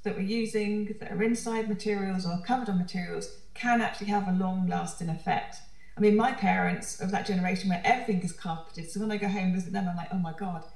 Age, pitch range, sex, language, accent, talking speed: 30-49, 180-215 Hz, female, English, British, 230 wpm